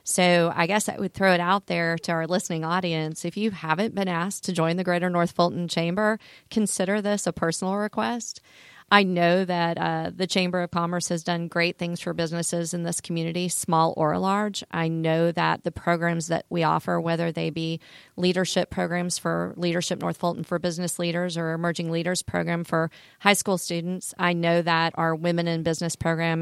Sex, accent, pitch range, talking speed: female, American, 165-180 Hz, 195 wpm